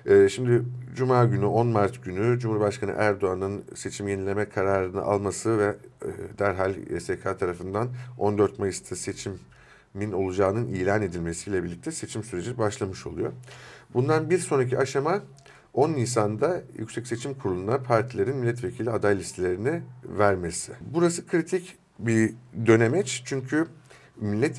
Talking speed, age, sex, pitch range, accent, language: 115 wpm, 50-69, male, 100-125 Hz, native, Turkish